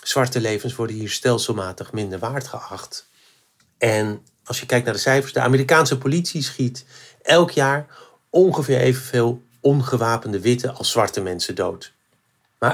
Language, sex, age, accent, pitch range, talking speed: Dutch, male, 50-69, Dutch, 115-130 Hz, 140 wpm